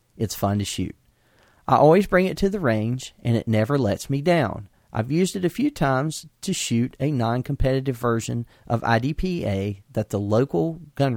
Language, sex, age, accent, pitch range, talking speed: English, male, 40-59, American, 115-155 Hz, 185 wpm